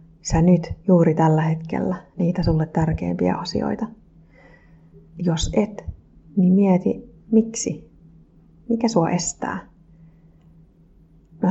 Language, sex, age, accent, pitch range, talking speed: Finnish, female, 30-49, native, 165-185 Hz, 95 wpm